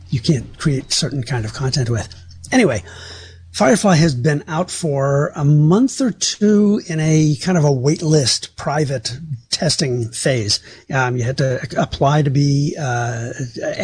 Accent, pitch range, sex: American, 125-155 Hz, male